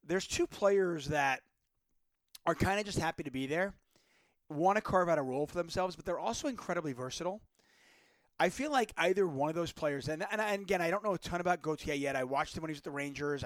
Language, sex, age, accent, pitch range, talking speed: English, male, 30-49, American, 145-185 Hz, 240 wpm